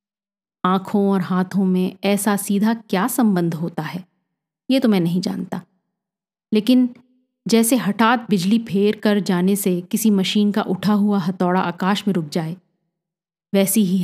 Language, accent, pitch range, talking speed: Hindi, native, 185-225 Hz, 150 wpm